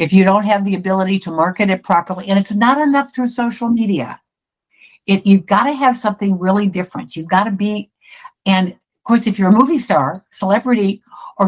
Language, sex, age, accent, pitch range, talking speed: English, female, 60-79, American, 180-225 Hz, 200 wpm